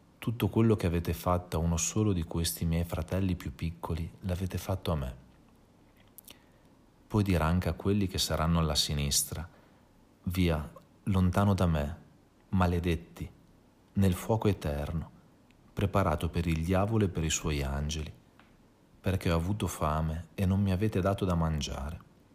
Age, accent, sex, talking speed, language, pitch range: 40-59, native, male, 150 wpm, Italian, 80-95 Hz